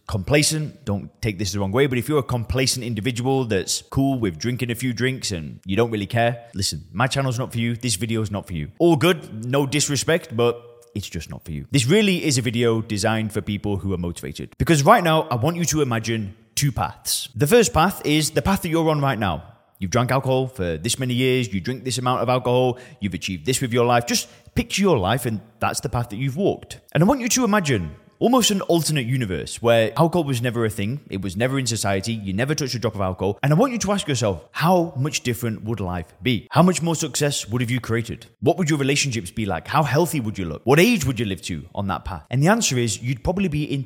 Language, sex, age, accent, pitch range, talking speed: English, male, 20-39, British, 105-140 Hz, 255 wpm